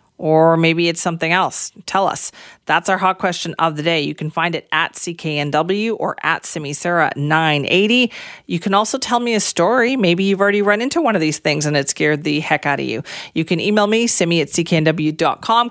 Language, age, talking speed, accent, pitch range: English, 40-59, 210 wpm, American, 160-205 Hz